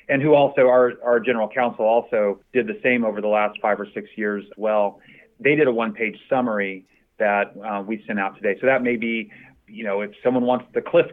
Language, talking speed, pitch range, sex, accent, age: English, 225 wpm, 110-140 Hz, male, American, 30-49